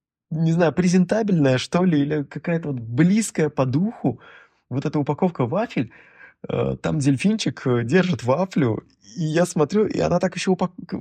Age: 20-39